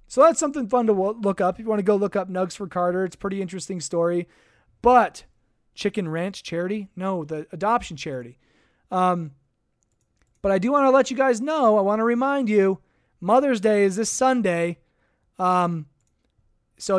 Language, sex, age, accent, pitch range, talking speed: English, male, 20-39, American, 170-220 Hz, 185 wpm